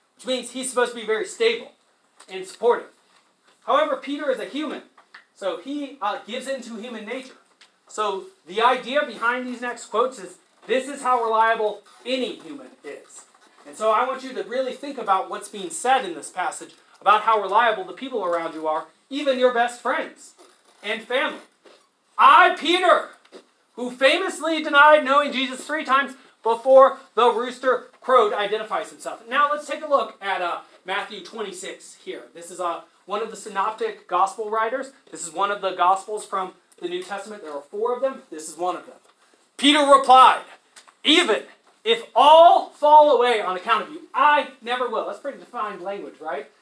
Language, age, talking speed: English, 30-49, 180 wpm